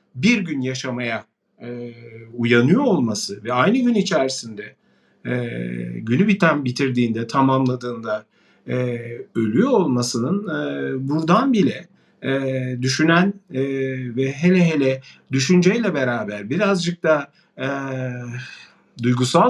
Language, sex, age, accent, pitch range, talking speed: Turkish, male, 50-69, native, 130-195 Hz, 100 wpm